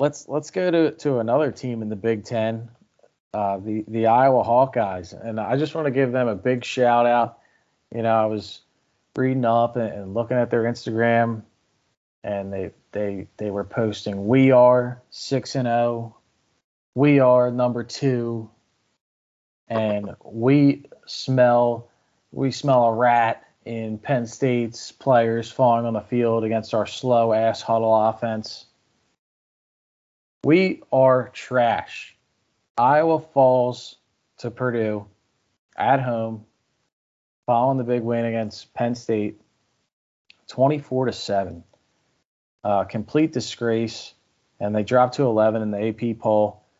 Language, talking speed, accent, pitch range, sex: English, 135 wpm, American, 110-125 Hz, male